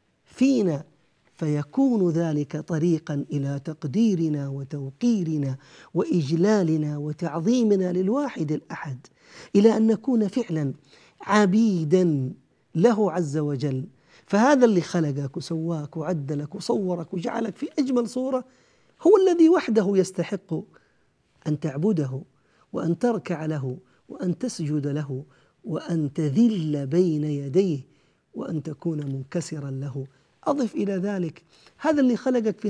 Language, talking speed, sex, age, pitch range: Arabic, 105 wpm, male, 50-69, 150-210 Hz